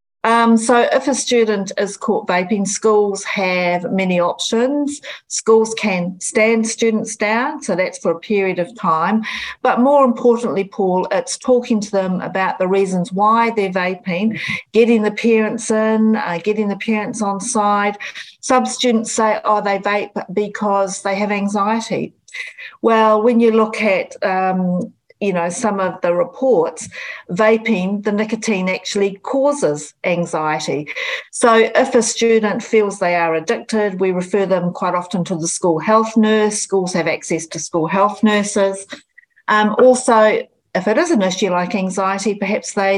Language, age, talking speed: English, 50-69, 155 wpm